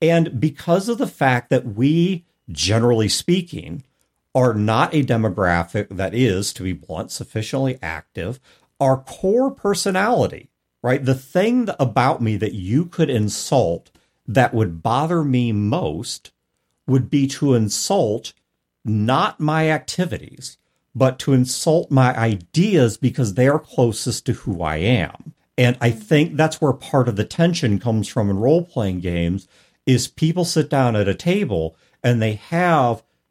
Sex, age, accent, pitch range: male, 50-69, American, 110-155 Hz